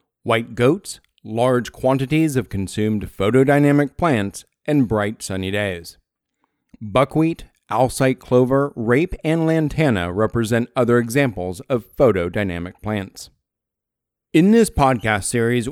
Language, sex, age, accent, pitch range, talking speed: English, male, 40-59, American, 110-145 Hz, 105 wpm